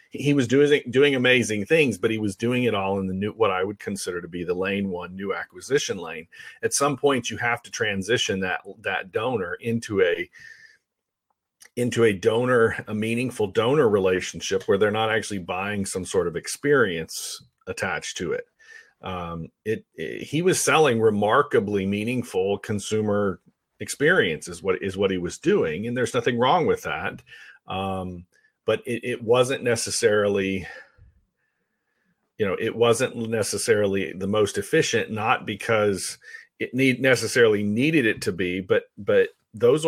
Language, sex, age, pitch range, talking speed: English, male, 40-59, 100-150 Hz, 160 wpm